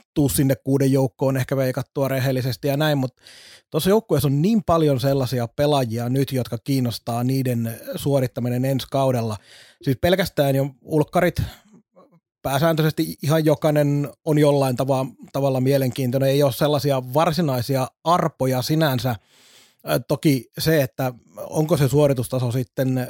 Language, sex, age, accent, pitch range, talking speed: Finnish, male, 30-49, native, 130-150 Hz, 120 wpm